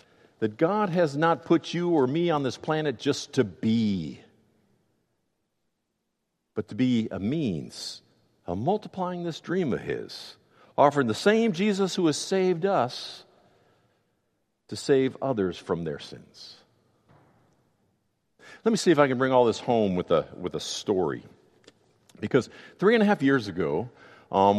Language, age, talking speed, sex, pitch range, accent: English, 50-69, 150 wpm, male, 115-170 Hz, American